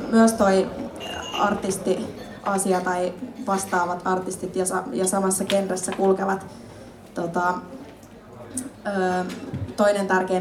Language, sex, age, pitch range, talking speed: Finnish, female, 20-39, 185-205 Hz, 85 wpm